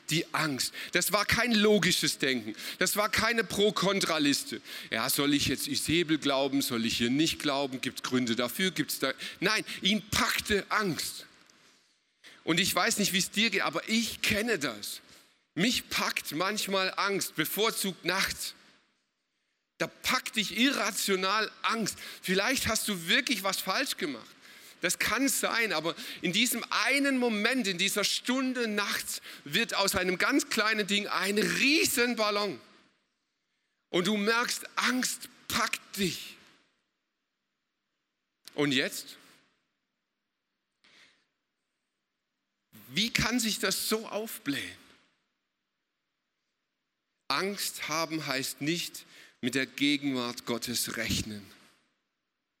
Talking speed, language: 125 wpm, German